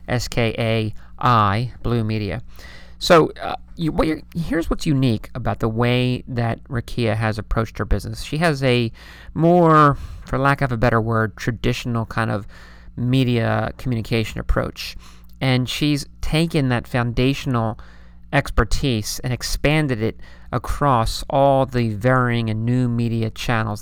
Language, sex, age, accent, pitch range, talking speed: English, male, 40-59, American, 105-135 Hz, 125 wpm